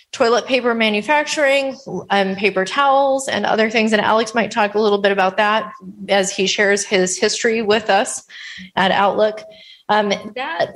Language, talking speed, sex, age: English, 165 wpm, female, 30-49